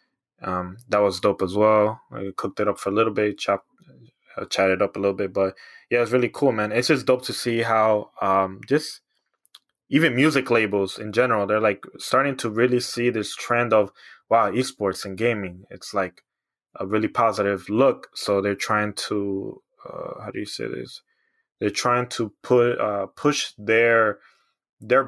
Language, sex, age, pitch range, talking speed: English, male, 20-39, 100-125 Hz, 180 wpm